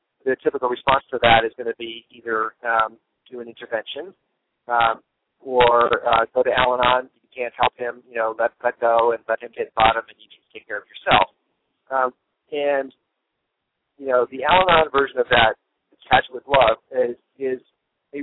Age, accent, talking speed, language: 40-59, American, 190 wpm, English